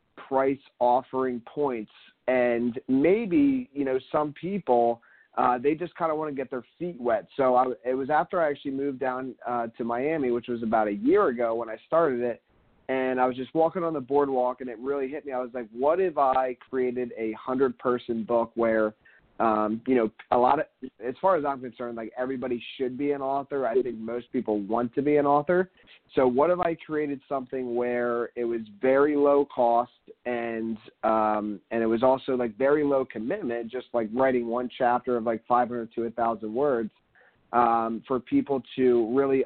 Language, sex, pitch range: English, male, 115-135 Hz